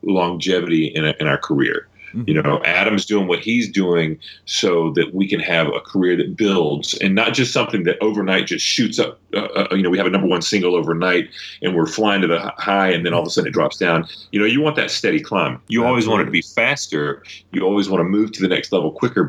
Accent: American